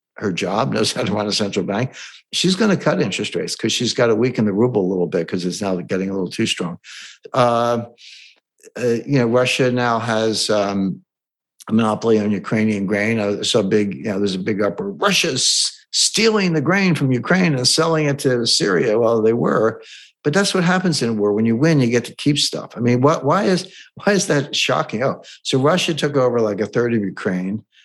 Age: 60-79